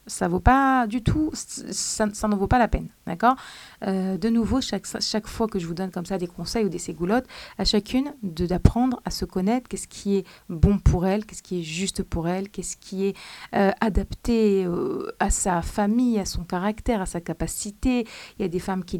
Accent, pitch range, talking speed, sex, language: French, 185-220 Hz, 220 wpm, female, French